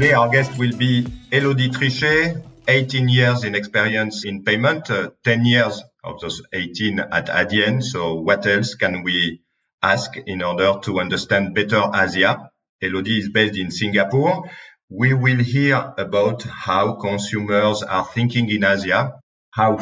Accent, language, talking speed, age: French, English, 145 wpm, 50-69